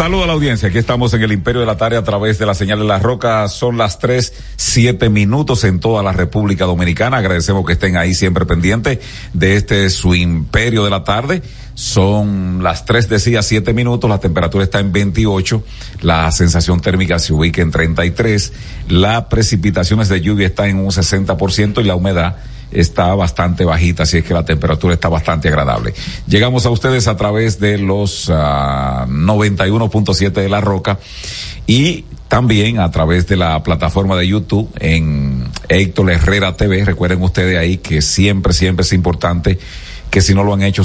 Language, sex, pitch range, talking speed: Spanish, male, 90-105 Hz, 185 wpm